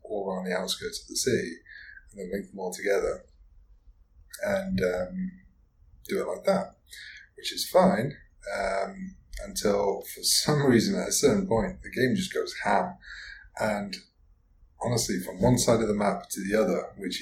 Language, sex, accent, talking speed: English, male, British, 165 wpm